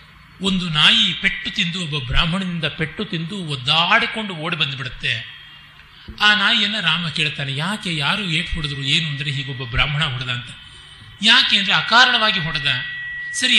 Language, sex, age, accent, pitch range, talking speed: Kannada, male, 30-49, native, 130-195 Hz, 130 wpm